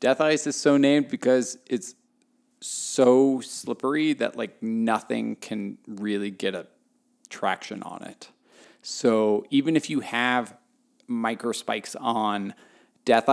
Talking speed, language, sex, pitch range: 125 wpm, English, male, 110-145 Hz